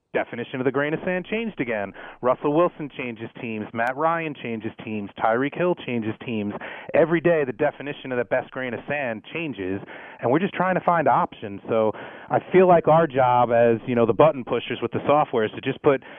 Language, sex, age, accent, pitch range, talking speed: English, male, 30-49, American, 125-160 Hz, 210 wpm